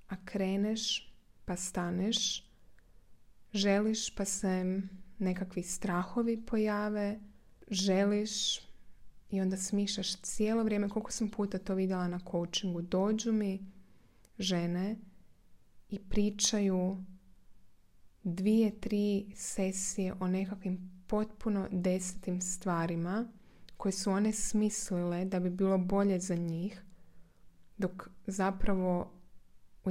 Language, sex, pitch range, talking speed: Croatian, female, 175-210 Hz, 100 wpm